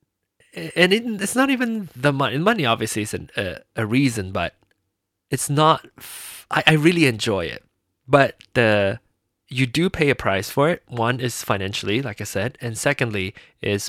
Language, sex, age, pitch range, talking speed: English, male, 20-39, 105-155 Hz, 175 wpm